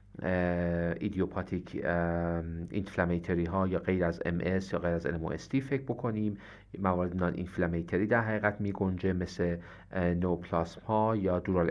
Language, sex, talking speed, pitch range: Persian, male, 125 wpm, 90-110 Hz